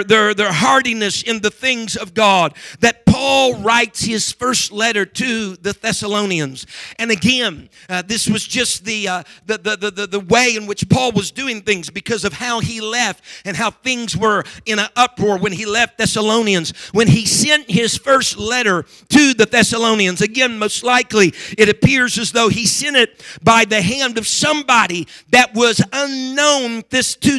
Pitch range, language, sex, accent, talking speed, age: 205-250 Hz, English, male, American, 170 wpm, 50-69